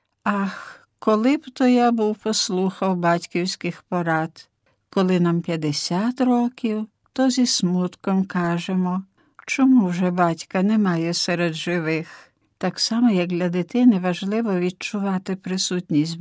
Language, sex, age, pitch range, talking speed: Ukrainian, female, 60-79, 175-225 Hz, 115 wpm